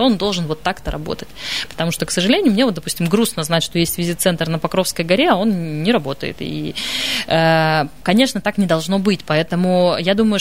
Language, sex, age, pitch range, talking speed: Russian, female, 20-39, 165-205 Hz, 190 wpm